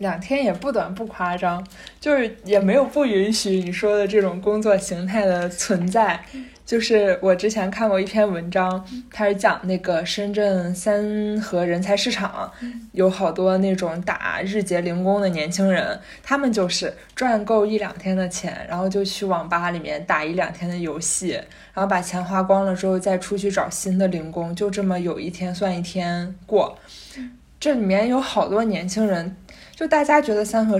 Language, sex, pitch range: Chinese, female, 180-210 Hz